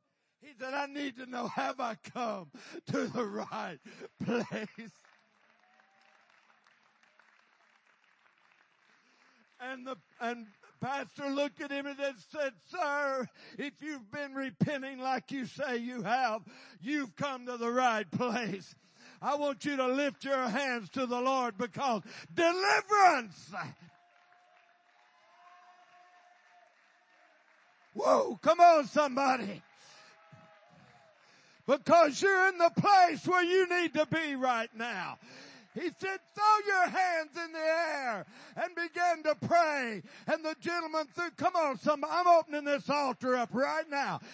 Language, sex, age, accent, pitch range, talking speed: English, male, 60-79, American, 250-320 Hz, 125 wpm